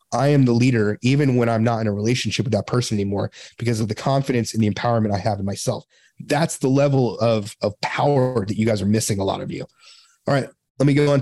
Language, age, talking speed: English, 30-49, 250 wpm